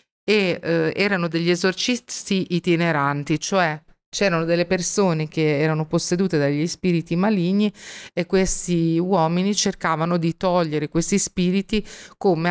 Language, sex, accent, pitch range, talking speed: Italian, female, native, 160-195 Hz, 115 wpm